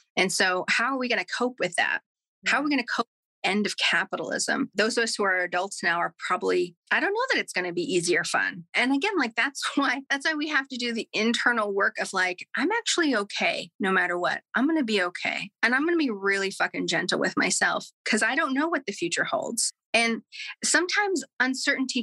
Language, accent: English, American